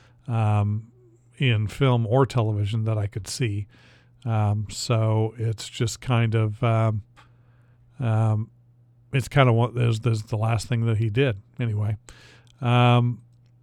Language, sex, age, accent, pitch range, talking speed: English, male, 40-59, American, 110-130 Hz, 135 wpm